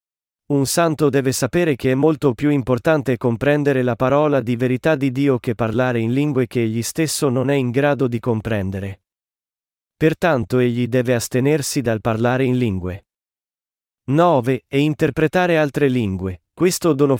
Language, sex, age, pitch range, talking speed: Italian, male, 40-59, 120-155 Hz, 155 wpm